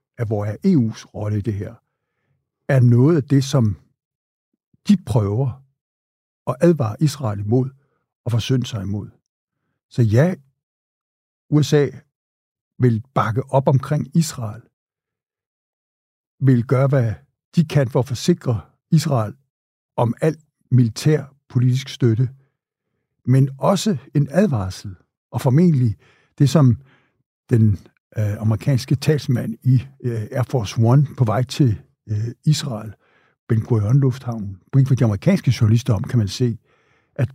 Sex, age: male, 60-79